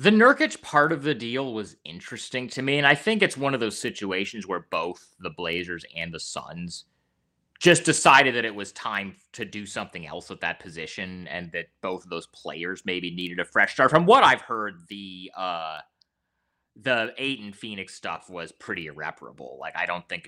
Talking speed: 195 wpm